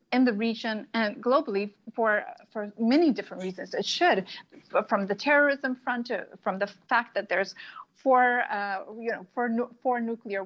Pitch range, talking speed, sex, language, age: 205-250 Hz, 165 wpm, female, English, 30-49